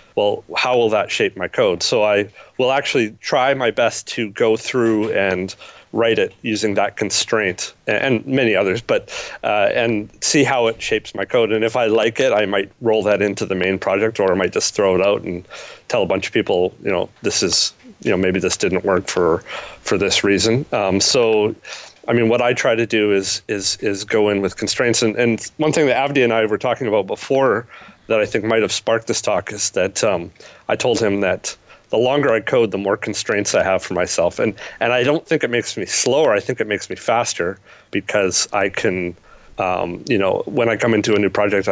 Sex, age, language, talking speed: male, 40-59, English, 225 wpm